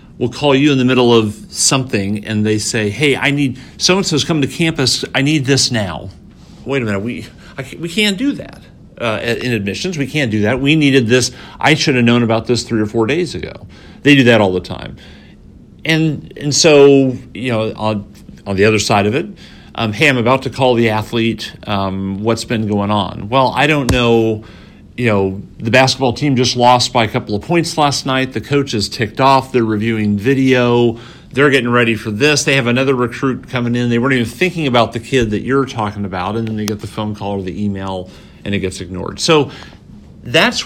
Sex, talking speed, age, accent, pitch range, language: male, 220 wpm, 50-69, American, 105-135 Hz, English